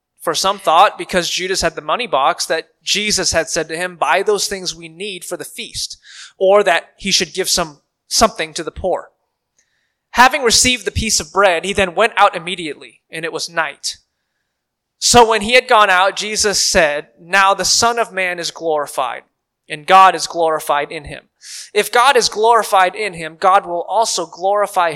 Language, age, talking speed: English, 20-39, 190 wpm